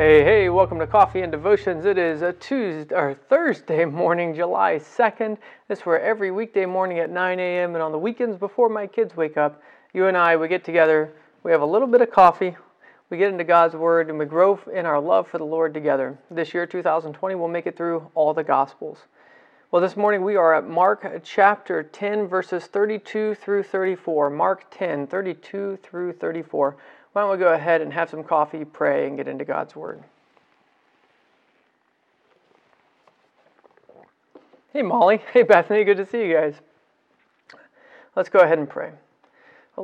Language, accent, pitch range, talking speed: English, American, 160-200 Hz, 180 wpm